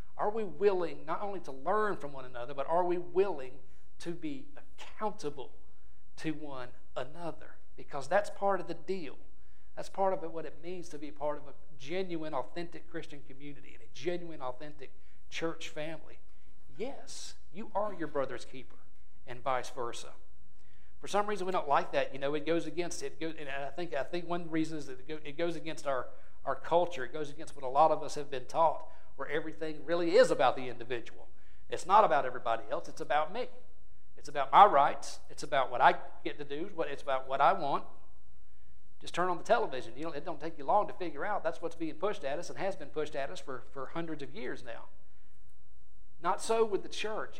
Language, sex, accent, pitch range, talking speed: English, male, American, 130-175 Hz, 210 wpm